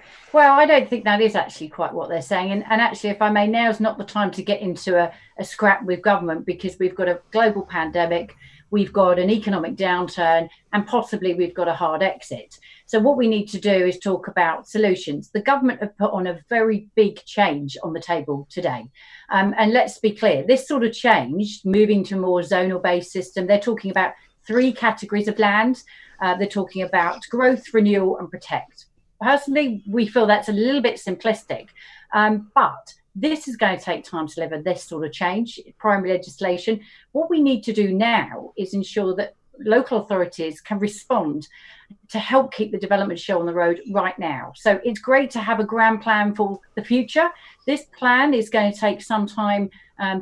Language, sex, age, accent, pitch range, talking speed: English, female, 40-59, British, 185-225 Hz, 200 wpm